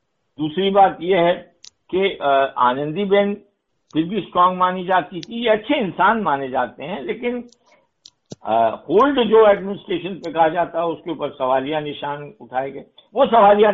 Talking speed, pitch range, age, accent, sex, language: 145 wpm, 145-205 Hz, 60-79, native, male, Hindi